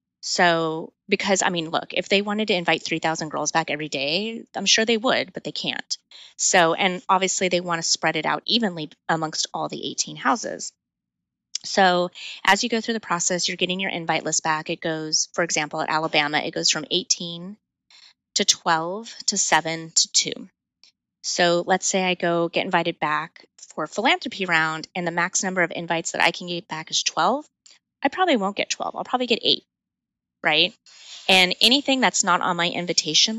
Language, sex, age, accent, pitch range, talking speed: English, female, 20-39, American, 160-205 Hz, 190 wpm